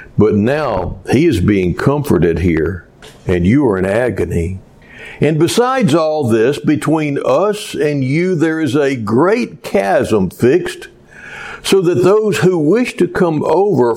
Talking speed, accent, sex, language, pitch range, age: 145 wpm, American, male, English, 115-165 Hz, 60-79